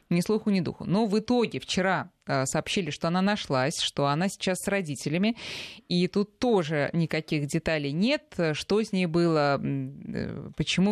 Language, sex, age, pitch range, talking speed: Russian, female, 20-39, 150-200 Hz, 155 wpm